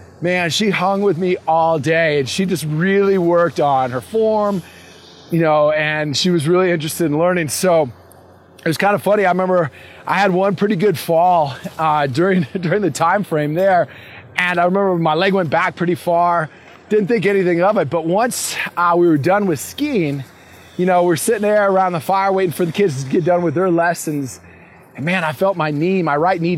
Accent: American